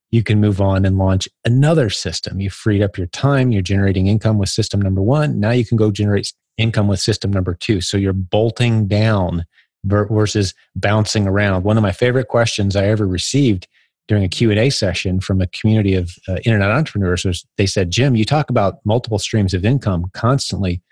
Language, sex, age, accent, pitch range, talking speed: English, male, 30-49, American, 95-125 Hz, 195 wpm